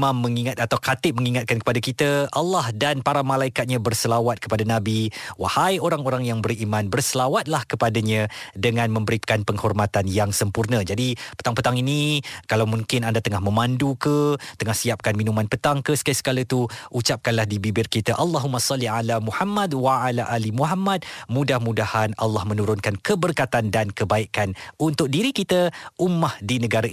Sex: male